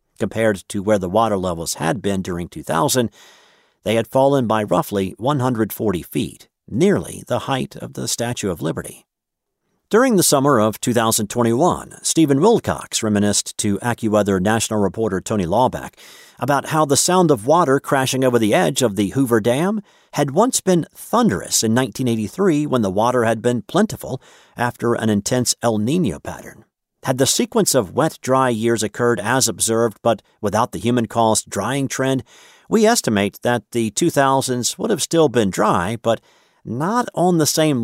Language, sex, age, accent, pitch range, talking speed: English, male, 50-69, American, 105-135 Hz, 160 wpm